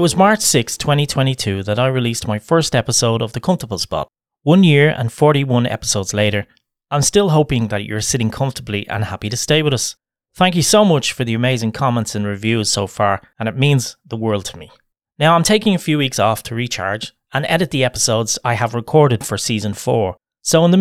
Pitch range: 110-150 Hz